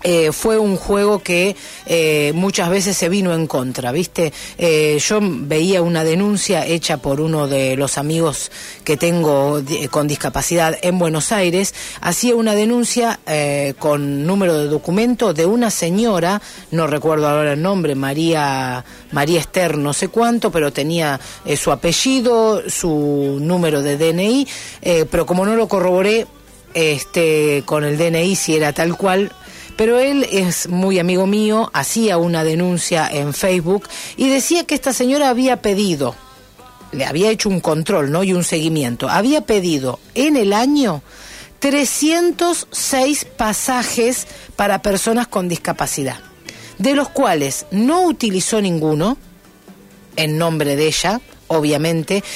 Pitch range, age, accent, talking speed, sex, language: 155-220 Hz, 40-59, Argentinian, 145 wpm, female, Spanish